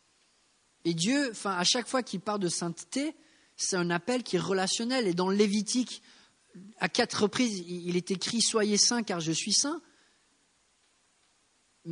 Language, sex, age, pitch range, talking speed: English, male, 40-59, 175-235 Hz, 175 wpm